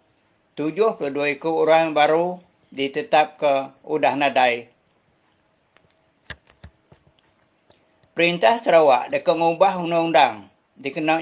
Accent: Indonesian